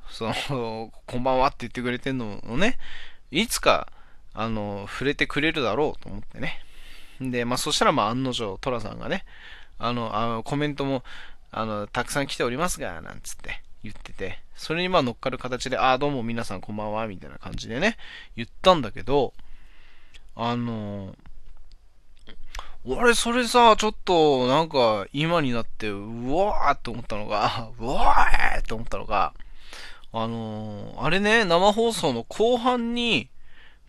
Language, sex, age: Japanese, male, 20-39